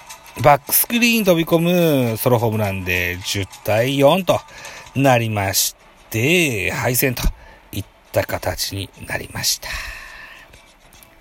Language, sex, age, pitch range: Japanese, male, 40-59, 110-170 Hz